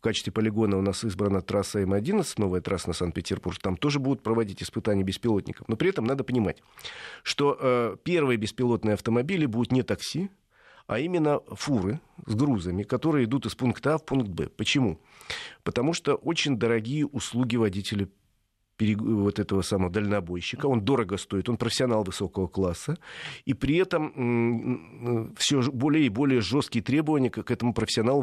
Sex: male